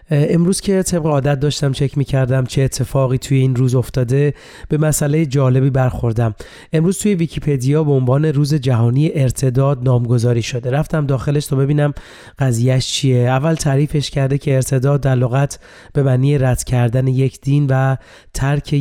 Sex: male